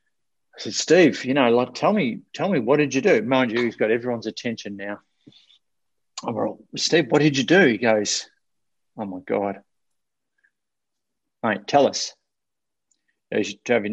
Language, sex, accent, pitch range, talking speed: English, male, Australian, 115-150 Hz, 160 wpm